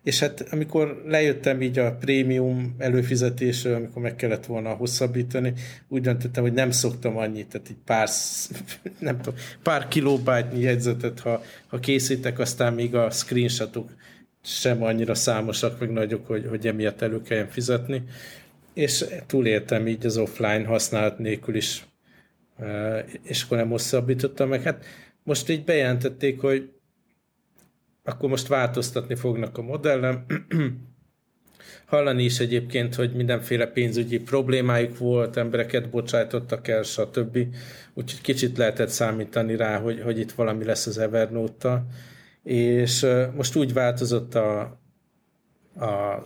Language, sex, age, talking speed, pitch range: Hungarian, male, 50-69, 130 wpm, 115-130 Hz